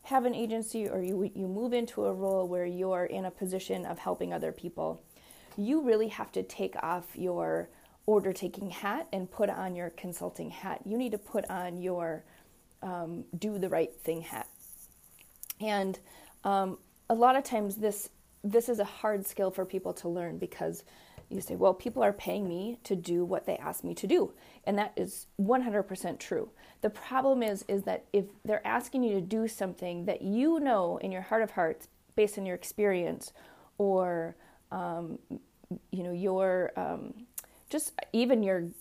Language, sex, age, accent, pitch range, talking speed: English, female, 30-49, American, 180-225 Hz, 175 wpm